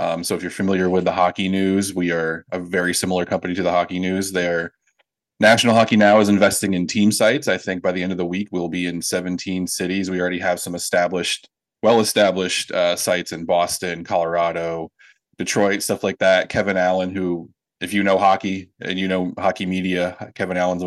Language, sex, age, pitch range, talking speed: English, male, 20-39, 90-95 Hz, 200 wpm